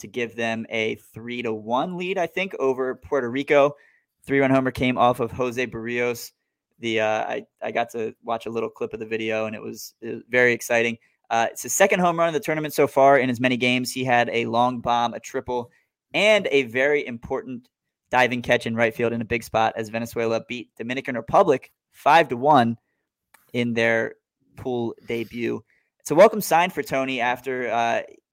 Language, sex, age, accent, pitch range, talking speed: English, male, 20-39, American, 115-135 Hz, 200 wpm